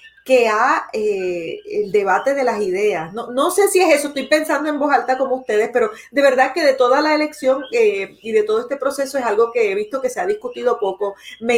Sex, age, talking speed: female, 30-49, 240 wpm